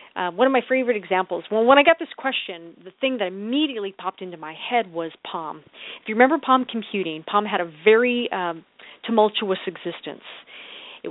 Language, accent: English, American